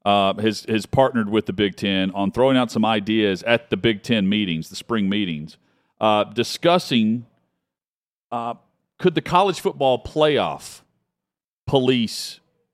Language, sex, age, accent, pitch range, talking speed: English, male, 40-59, American, 100-130 Hz, 140 wpm